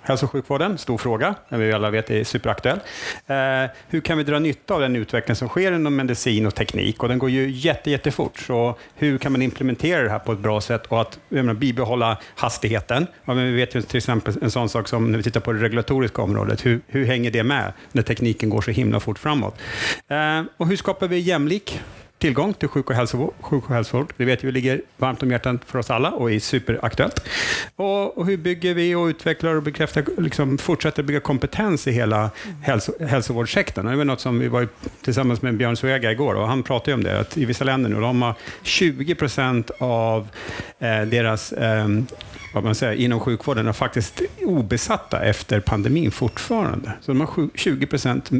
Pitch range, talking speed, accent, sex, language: 115-145 Hz, 205 wpm, Norwegian, male, Swedish